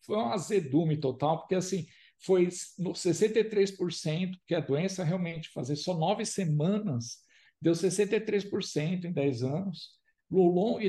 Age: 60-79